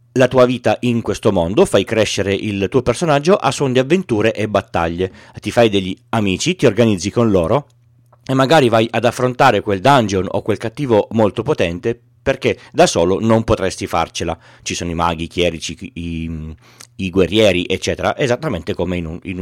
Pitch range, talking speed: 100-125 Hz, 175 wpm